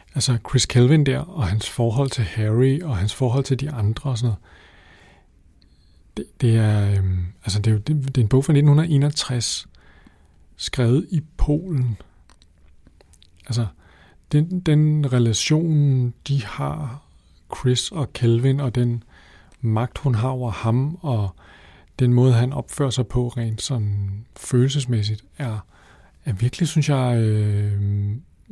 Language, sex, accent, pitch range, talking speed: Danish, male, native, 105-135 Hz, 140 wpm